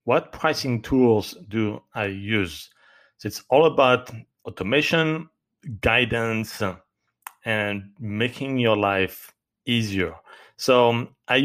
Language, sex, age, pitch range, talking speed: English, male, 40-59, 110-140 Hz, 100 wpm